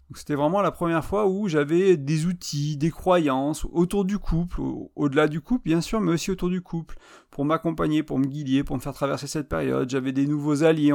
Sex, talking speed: male, 215 wpm